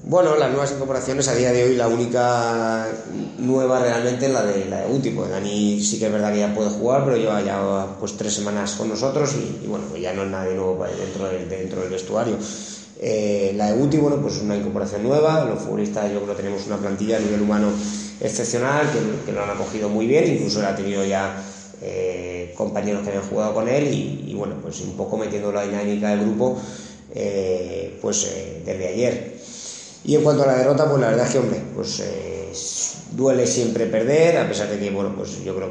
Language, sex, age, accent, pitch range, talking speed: Spanish, male, 20-39, Spanish, 100-115 Hz, 220 wpm